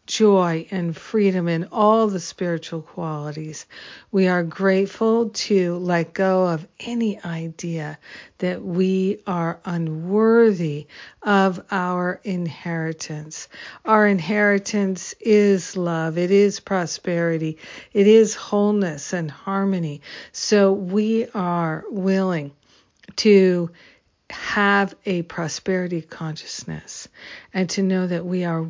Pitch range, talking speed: 170-200 Hz, 105 wpm